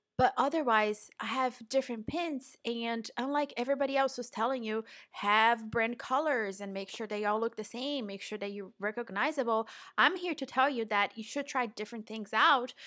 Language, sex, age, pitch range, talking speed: English, female, 20-39, 210-265 Hz, 190 wpm